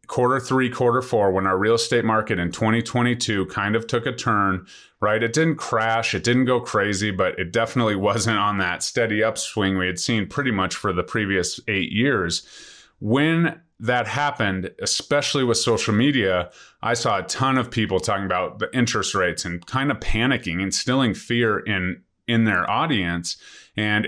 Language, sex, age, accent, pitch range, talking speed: English, male, 30-49, American, 95-125 Hz, 175 wpm